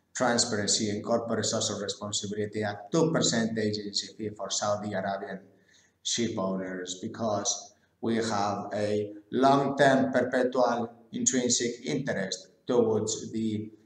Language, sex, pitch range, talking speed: English, male, 105-120 Hz, 110 wpm